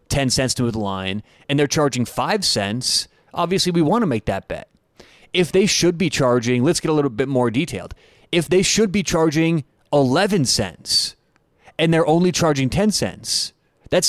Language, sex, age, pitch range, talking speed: English, male, 30-49, 125-170 Hz, 185 wpm